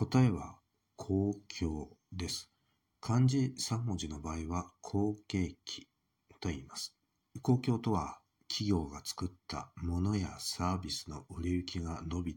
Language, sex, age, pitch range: Japanese, male, 50-69, 85-105 Hz